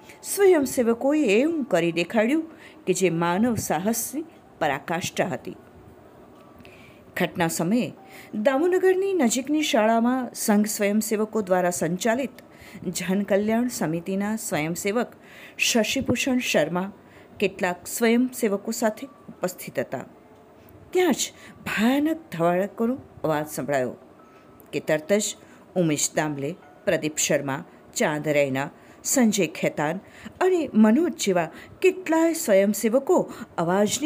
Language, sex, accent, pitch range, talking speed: Hindi, female, native, 175-255 Hz, 75 wpm